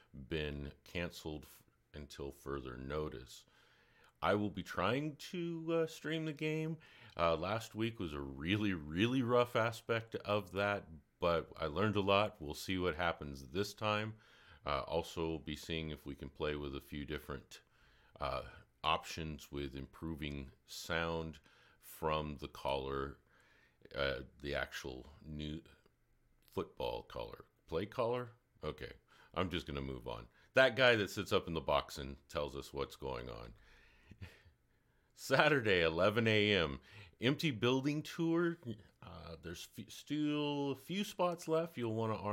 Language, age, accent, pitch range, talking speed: English, 50-69, American, 75-115 Hz, 145 wpm